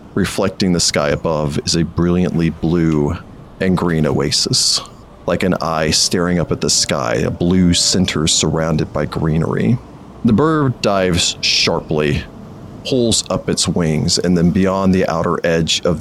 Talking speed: 150 wpm